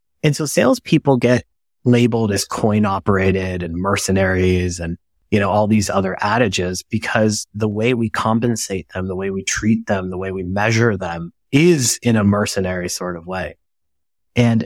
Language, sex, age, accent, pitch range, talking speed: English, male, 30-49, American, 95-115 Hz, 170 wpm